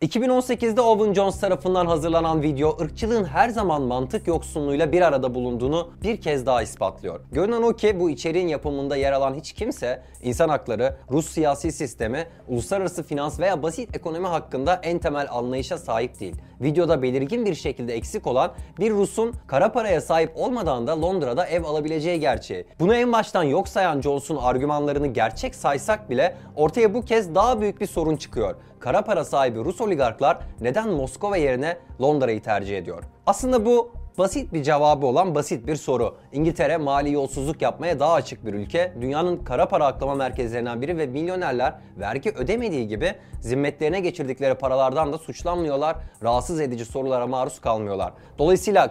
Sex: male